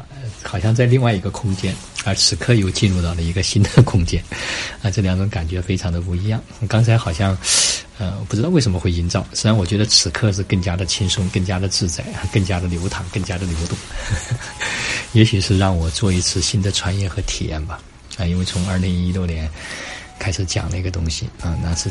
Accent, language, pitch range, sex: native, Chinese, 90-105 Hz, male